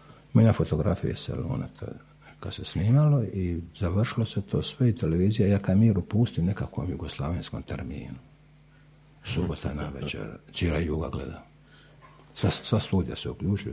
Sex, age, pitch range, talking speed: male, 60-79, 90-145 Hz, 140 wpm